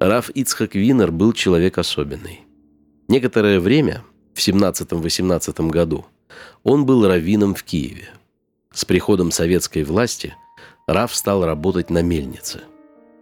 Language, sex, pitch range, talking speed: Russian, male, 85-125 Hz, 115 wpm